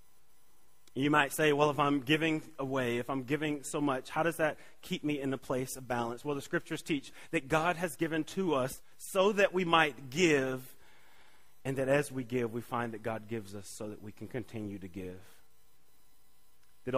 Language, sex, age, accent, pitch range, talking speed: English, male, 30-49, American, 110-155 Hz, 200 wpm